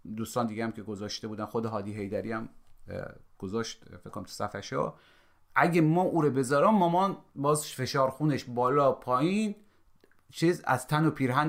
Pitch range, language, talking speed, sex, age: 115-155 Hz, Persian, 155 wpm, male, 30-49